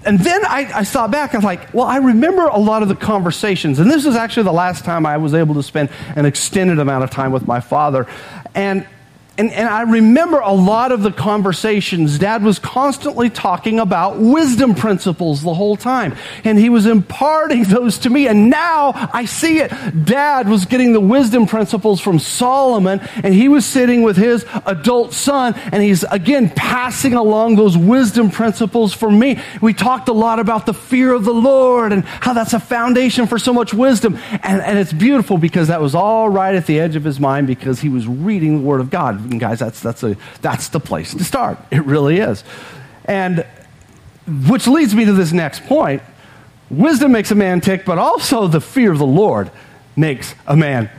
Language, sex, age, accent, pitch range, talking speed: English, male, 40-59, American, 160-235 Hz, 205 wpm